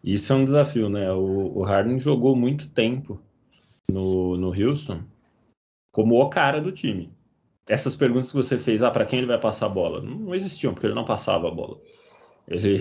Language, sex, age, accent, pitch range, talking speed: Portuguese, male, 20-39, Brazilian, 100-130 Hz, 195 wpm